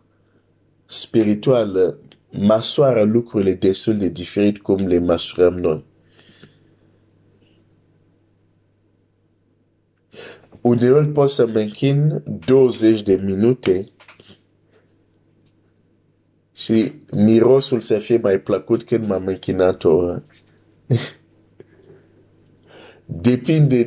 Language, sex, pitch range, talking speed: Romanian, male, 95-120 Hz, 75 wpm